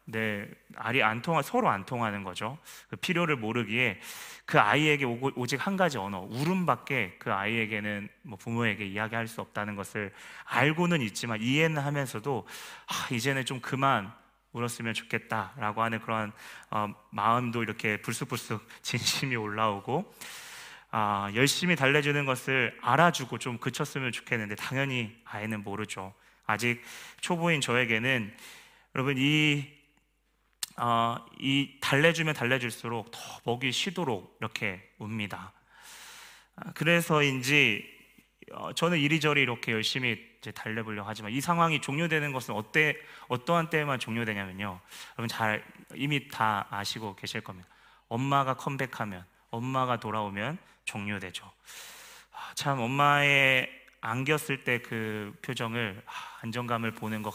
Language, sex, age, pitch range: Korean, male, 30-49, 110-140 Hz